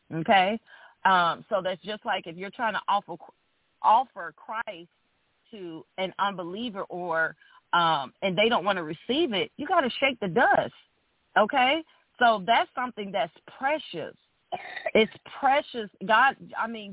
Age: 40-59